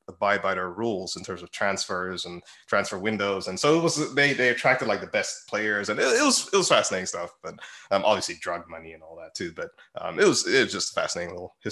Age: 20-39